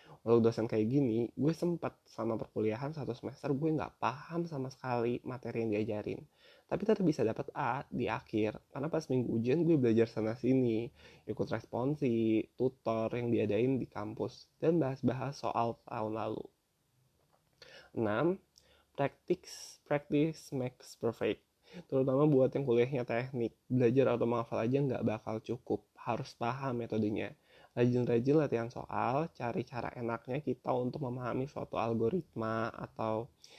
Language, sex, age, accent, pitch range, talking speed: Indonesian, male, 20-39, native, 115-140 Hz, 135 wpm